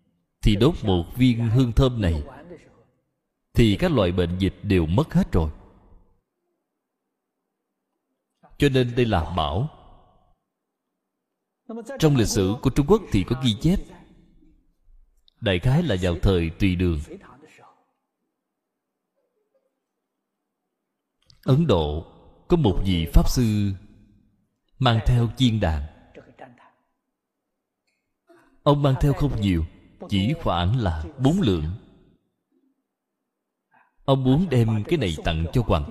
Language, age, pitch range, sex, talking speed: Vietnamese, 20-39, 95-140 Hz, male, 110 wpm